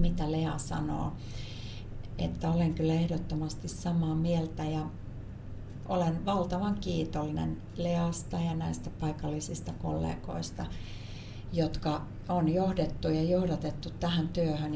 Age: 40-59